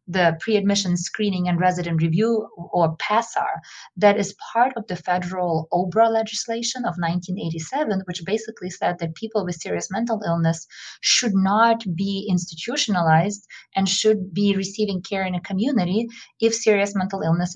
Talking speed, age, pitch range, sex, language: 145 wpm, 20-39, 170-210 Hz, female, English